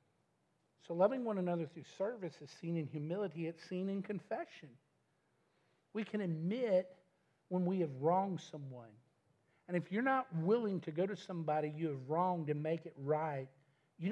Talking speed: 165 wpm